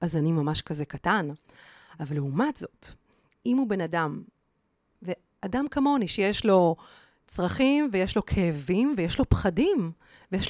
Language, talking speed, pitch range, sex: Hebrew, 135 wpm, 180-260 Hz, female